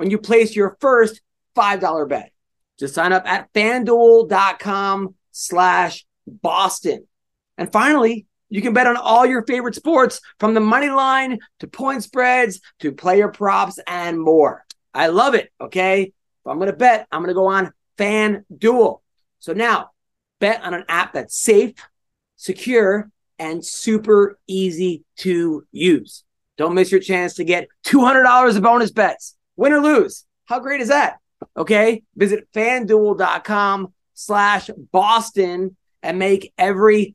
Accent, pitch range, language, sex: American, 180-225 Hz, English, male